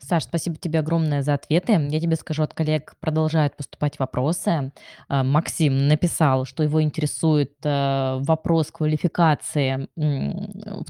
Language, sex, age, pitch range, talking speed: Russian, female, 20-39, 155-195 Hz, 120 wpm